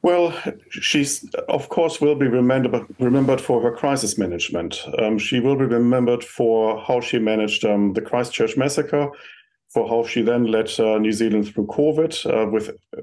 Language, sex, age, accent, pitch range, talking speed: English, male, 40-59, German, 110-140 Hz, 165 wpm